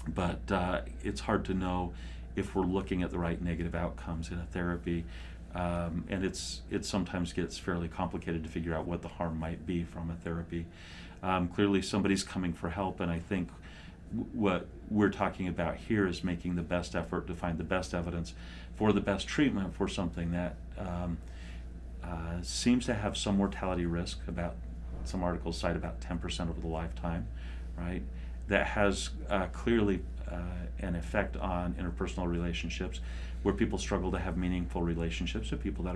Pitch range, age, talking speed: 80-95 Hz, 40-59, 175 wpm